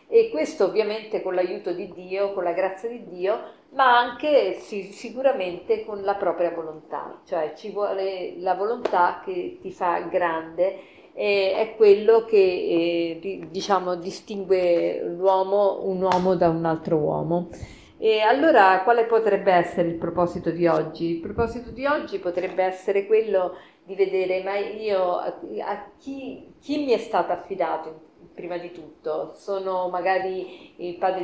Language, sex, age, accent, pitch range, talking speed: Italian, female, 50-69, native, 180-220 Hz, 150 wpm